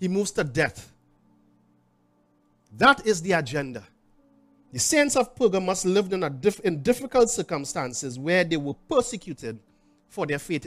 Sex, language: male, English